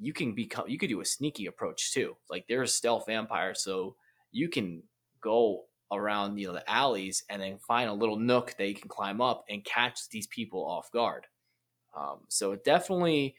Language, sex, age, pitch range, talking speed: English, male, 20-39, 100-120 Hz, 200 wpm